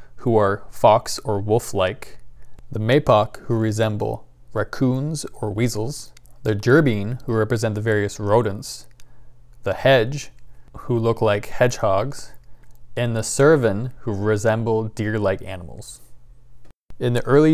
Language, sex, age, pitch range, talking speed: English, male, 20-39, 110-125 Hz, 120 wpm